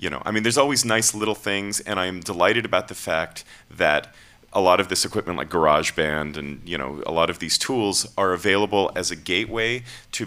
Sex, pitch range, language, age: male, 80-105 Hz, English, 40-59